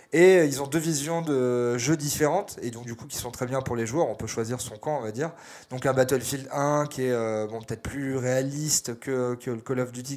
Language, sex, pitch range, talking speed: French, male, 120-145 Hz, 265 wpm